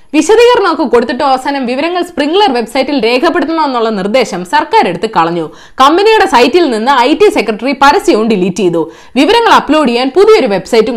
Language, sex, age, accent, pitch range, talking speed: Malayalam, female, 20-39, native, 220-335 Hz, 135 wpm